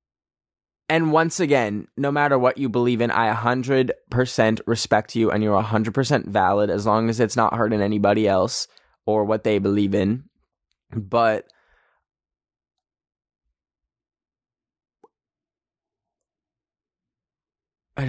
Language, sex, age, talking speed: English, male, 10-29, 105 wpm